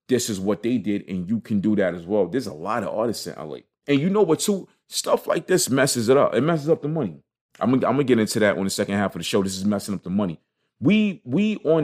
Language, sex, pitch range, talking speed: English, male, 95-130 Hz, 305 wpm